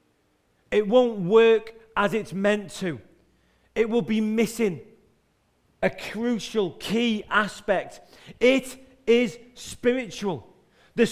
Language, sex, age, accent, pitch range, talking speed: English, male, 40-59, British, 205-235 Hz, 105 wpm